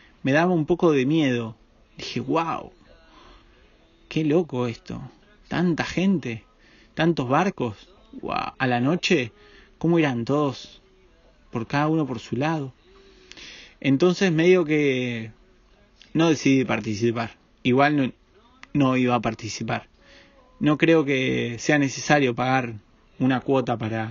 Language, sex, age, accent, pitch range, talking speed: Spanish, male, 30-49, Argentinian, 120-155 Hz, 120 wpm